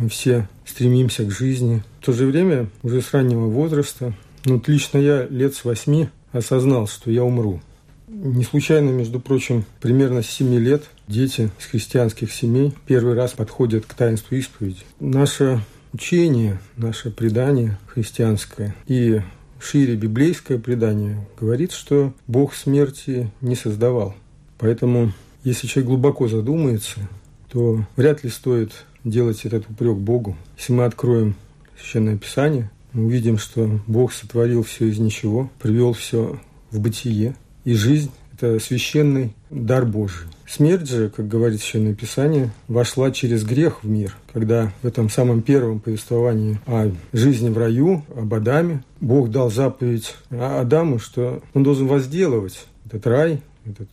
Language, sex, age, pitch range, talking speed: Russian, male, 50-69, 110-135 Hz, 140 wpm